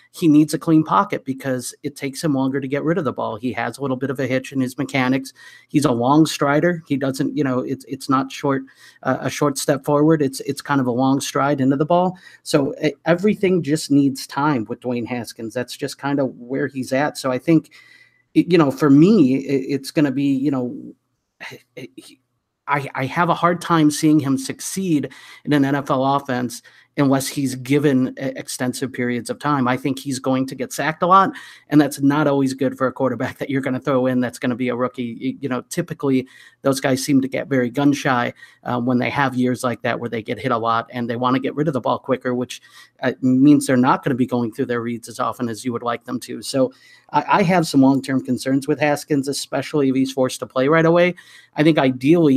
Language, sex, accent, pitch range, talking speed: English, male, American, 130-150 Hz, 235 wpm